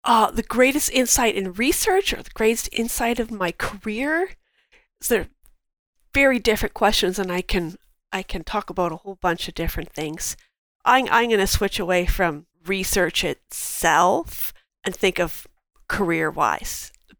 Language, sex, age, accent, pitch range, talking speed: English, female, 40-59, American, 180-230 Hz, 155 wpm